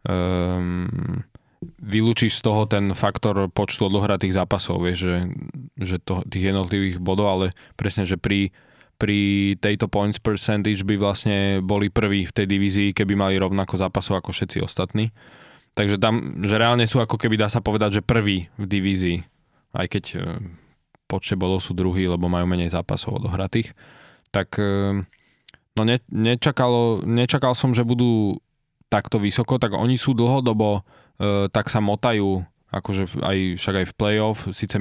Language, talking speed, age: Slovak, 150 wpm, 20-39